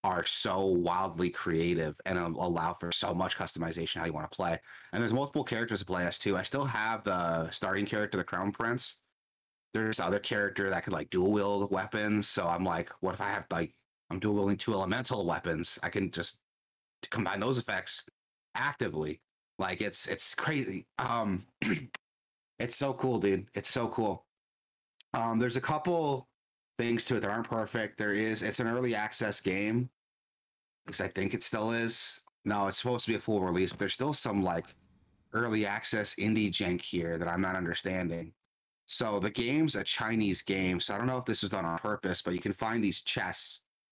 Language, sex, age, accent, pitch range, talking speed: English, male, 30-49, American, 90-115 Hz, 195 wpm